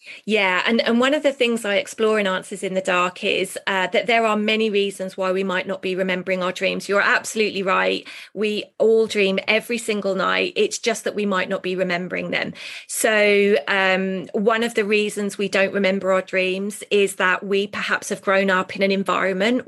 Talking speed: 205 wpm